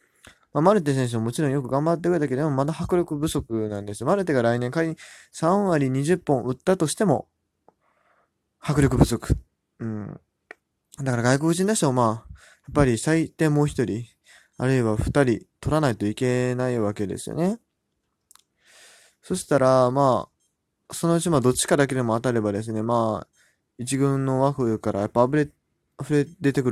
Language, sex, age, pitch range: Japanese, male, 20-39, 120-160 Hz